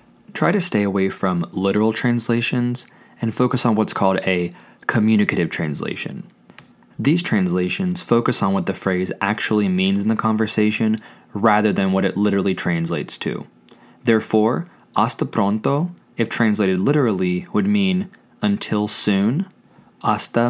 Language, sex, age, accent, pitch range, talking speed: English, male, 20-39, American, 100-120 Hz, 130 wpm